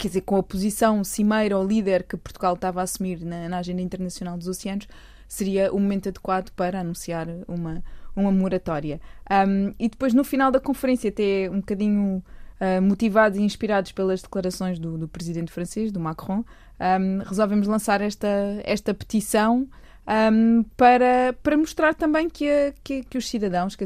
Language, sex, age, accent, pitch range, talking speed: Portuguese, female, 20-39, Brazilian, 185-225 Hz, 160 wpm